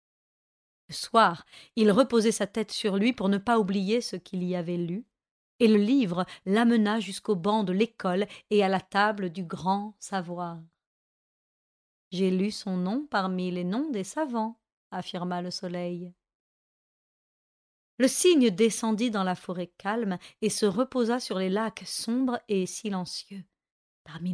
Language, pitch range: French, 180-225 Hz